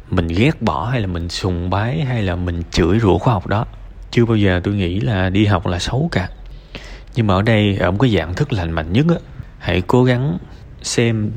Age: 20-39